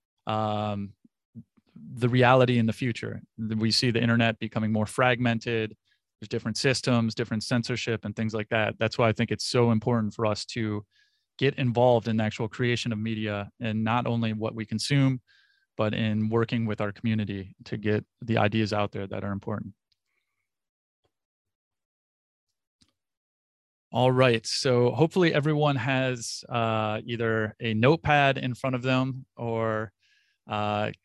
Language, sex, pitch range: English, male, 110-130 Hz